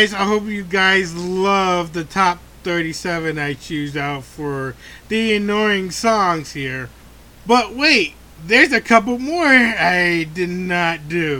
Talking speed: 135 wpm